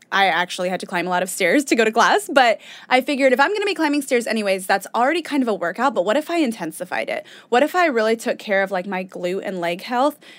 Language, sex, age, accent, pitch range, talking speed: English, female, 20-39, American, 200-270 Hz, 285 wpm